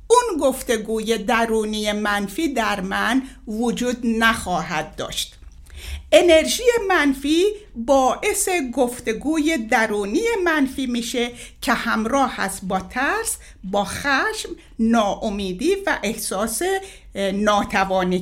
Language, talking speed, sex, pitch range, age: Persian, 90 wpm, female, 220-335 Hz, 60-79